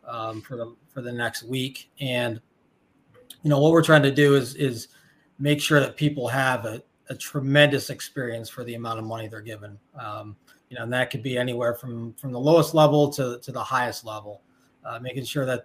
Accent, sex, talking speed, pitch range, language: American, male, 210 wpm, 120-140 Hz, English